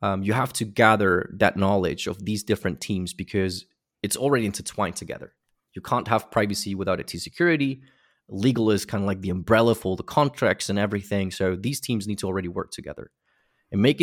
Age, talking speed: 20-39, 195 wpm